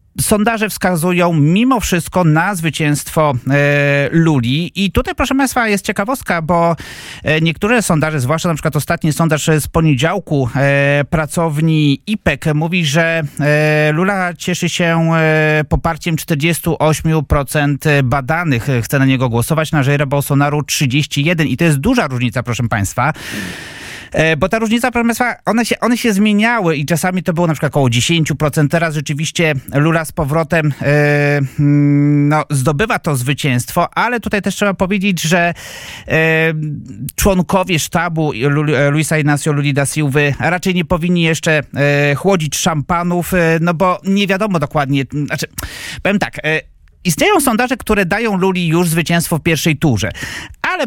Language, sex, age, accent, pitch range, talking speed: Polish, male, 30-49, native, 150-185 Hz, 145 wpm